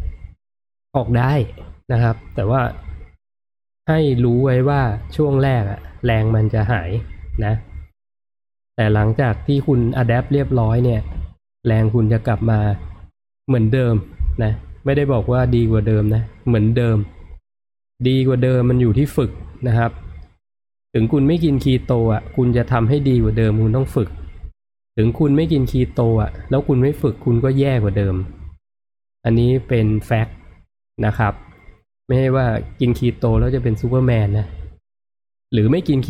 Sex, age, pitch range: male, 20-39, 100-125 Hz